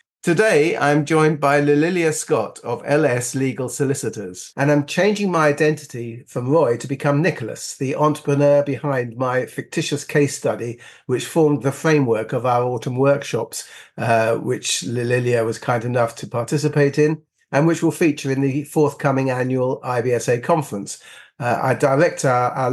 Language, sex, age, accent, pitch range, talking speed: English, male, 50-69, British, 125-150 Hz, 155 wpm